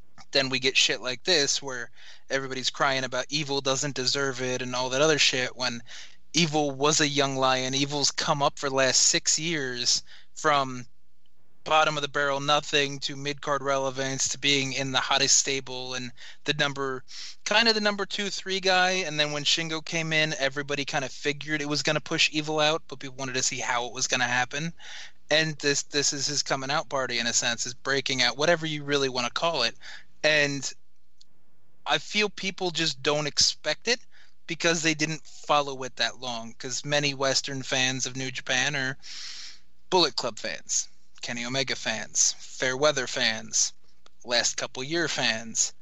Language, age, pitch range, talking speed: English, 20-39, 130-150 Hz, 185 wpm